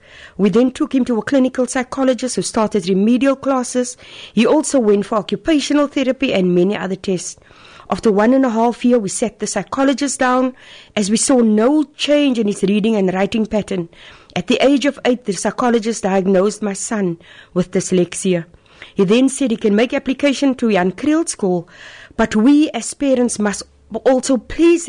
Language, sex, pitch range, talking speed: English, female, 200-260 Hz, 180 wpm